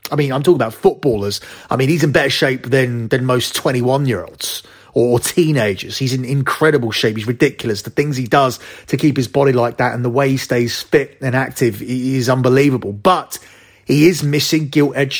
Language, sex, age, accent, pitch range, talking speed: English, male, 30-49, British, 130-155 Hz, 200 wpm